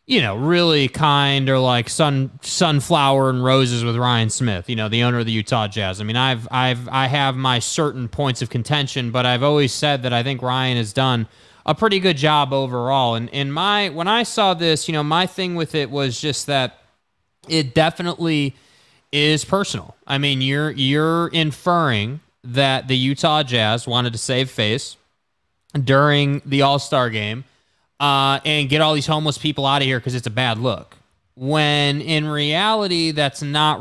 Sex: male